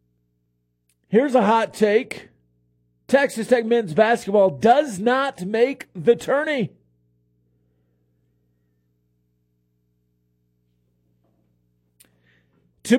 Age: 40-59